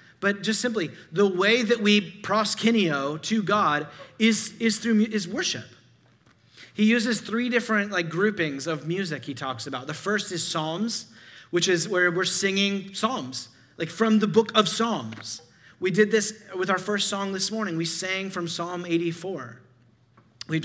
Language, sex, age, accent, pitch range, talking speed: English, male, 30-49, American, 155-195 Hz, 165 wpm